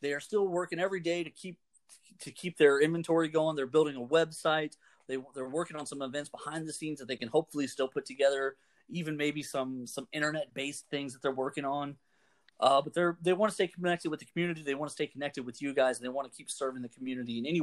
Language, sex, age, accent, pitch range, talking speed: English, male, 30-49, American, 130-155 Hz, 240 wpm